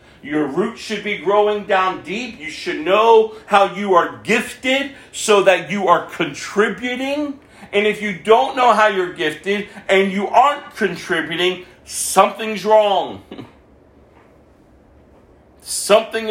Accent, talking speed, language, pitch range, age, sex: American, 125 wpm, English, 180-225 Hz, 50-69, male